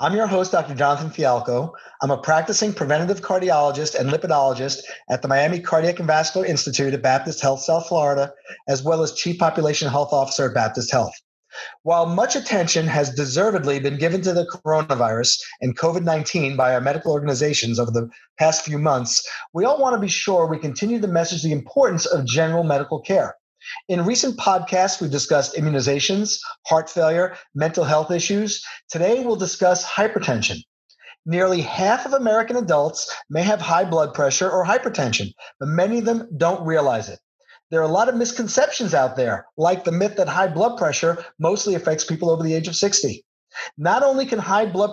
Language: English